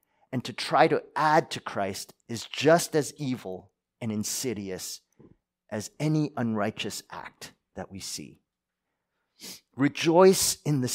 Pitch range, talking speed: 100-155 Hz, 125 wpm